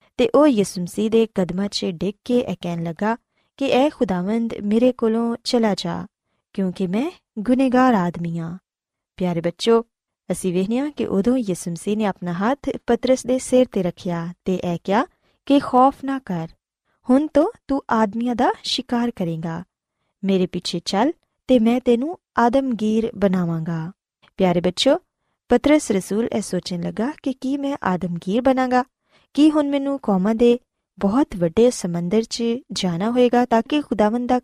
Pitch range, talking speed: 185-255 Hz, 150 wpm